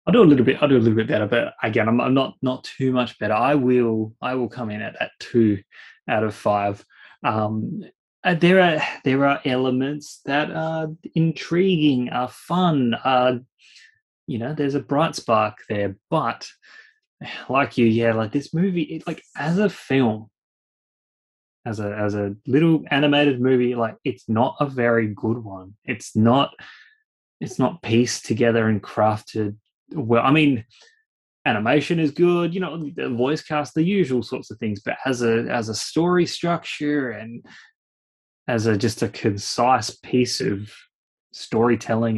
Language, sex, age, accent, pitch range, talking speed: English, male, 20-39, Australian, 110-150 Hz, 165 wpm